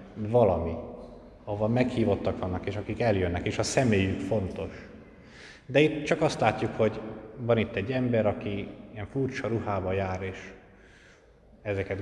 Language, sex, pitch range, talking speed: Hungarian, male, 95-115 Hz, 140 wpm